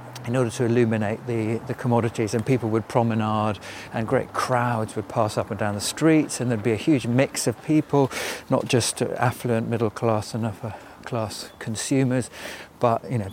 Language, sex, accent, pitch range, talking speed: English, male, British, 105-125 Hz, 185 wpm